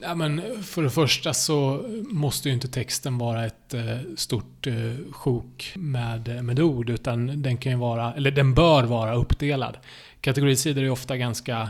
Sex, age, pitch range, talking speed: male, 30-49, 115-140 Hz, 155 wpm